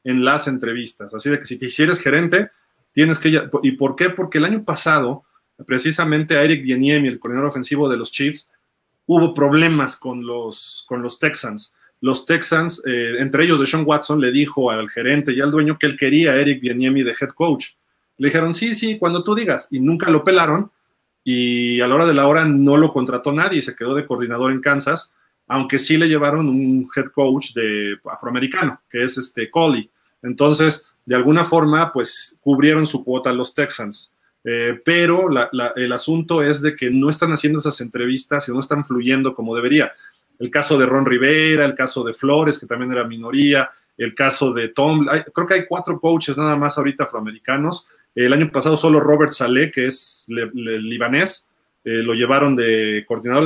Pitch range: 125-155 Hz